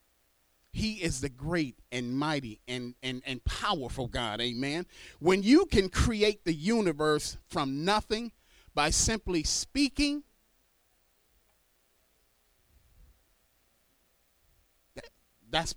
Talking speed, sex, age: 90 wpm, male, 40-59